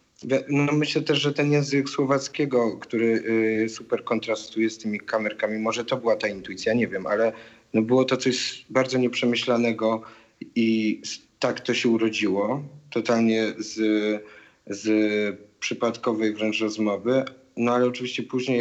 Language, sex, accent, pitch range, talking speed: Polish, male, native, 100-115 Hz, 130 wpm